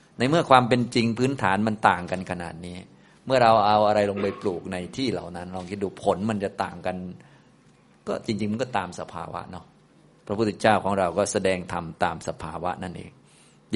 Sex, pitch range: male, 90-105 Hz